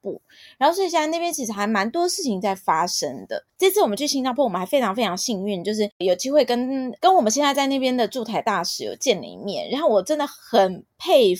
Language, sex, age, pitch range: Chinese, female, 20-39, 220-310 Hz